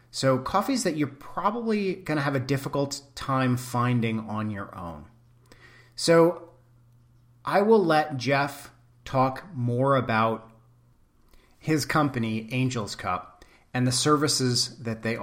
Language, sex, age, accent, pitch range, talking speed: English, male, 30-49, American, 110-140 Hz, 120 wpm